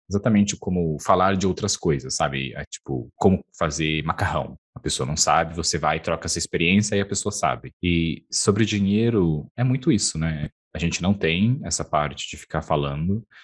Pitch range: 80-105 Hz